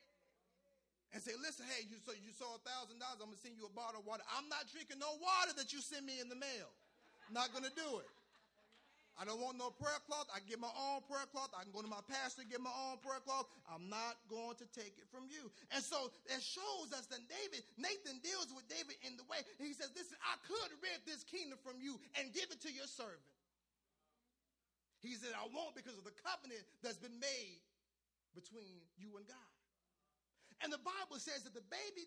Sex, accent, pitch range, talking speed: male, American, 240-335 Hz, 225 wpm